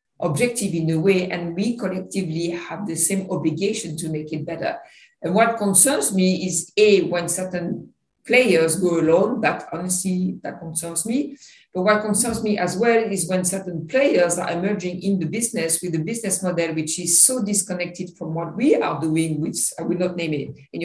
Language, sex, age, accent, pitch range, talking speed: English, female, 50-69, French, 165-200 Hz, 190 wpm